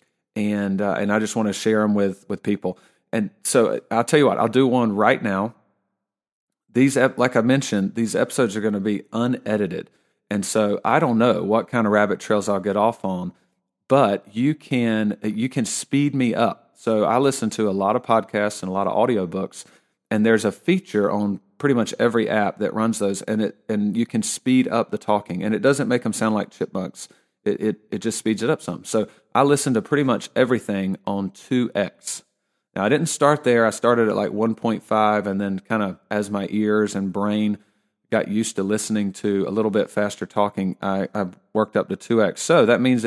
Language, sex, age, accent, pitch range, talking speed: English, male, 40-59, American, 100-120 Hz, 215 wpm